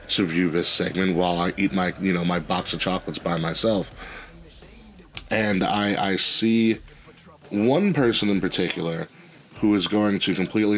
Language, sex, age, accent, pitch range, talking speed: English, male, 30-49, American, 90-105 Hz, 160 wpm